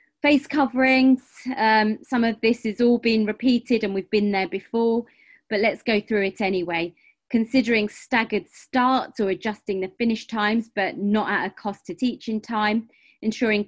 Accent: British